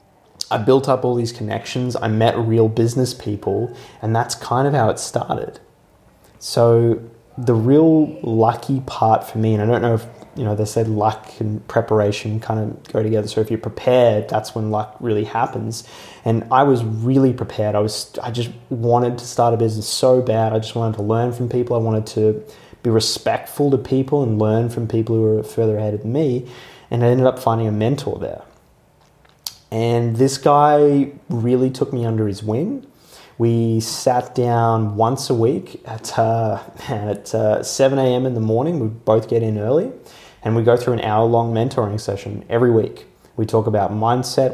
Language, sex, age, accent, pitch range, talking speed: English, male, 20-39, Australian, 110-125 Hz, 190 wpm